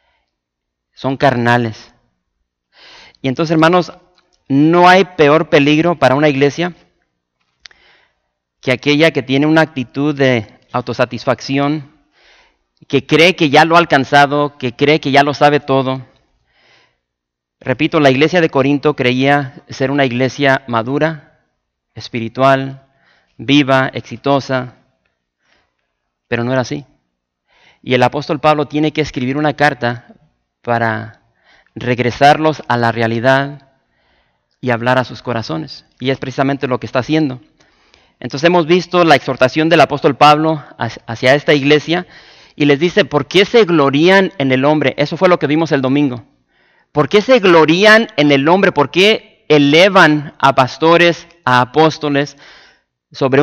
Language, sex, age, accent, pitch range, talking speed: English, male, 40-59, Mexican, 125-155 Hz, 135 wpm